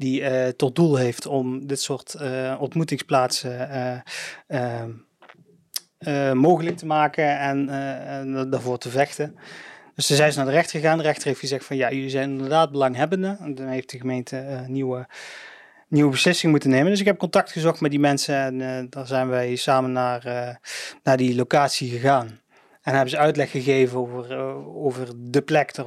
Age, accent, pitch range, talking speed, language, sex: 30-49, Dutch, 130-145 Hz, 195 wpm, Dutch, male